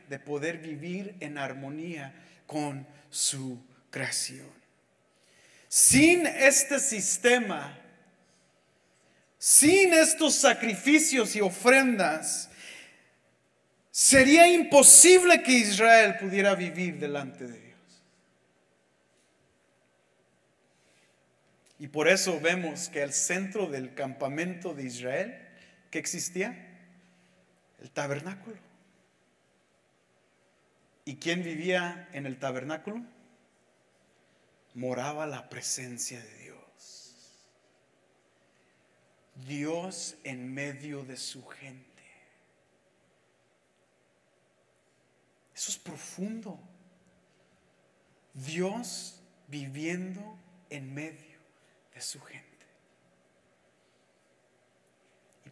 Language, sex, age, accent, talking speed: English, male, 40-59, Mexican, 75 wpm